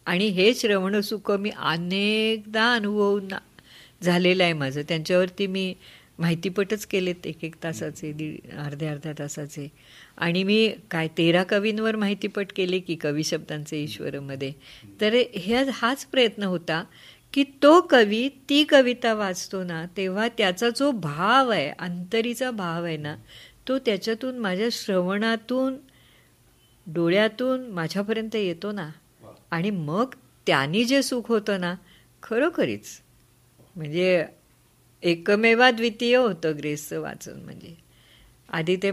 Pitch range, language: 170-220 Hz, Marathi